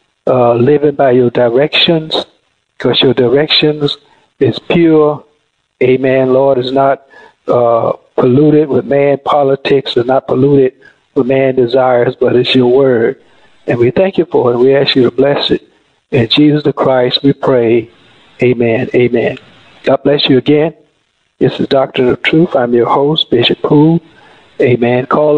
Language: English